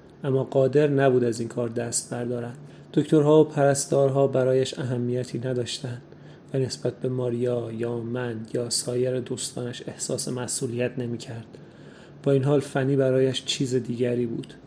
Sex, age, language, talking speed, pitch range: male, 30-49, Persian, 145 wpm, 125-135 Hz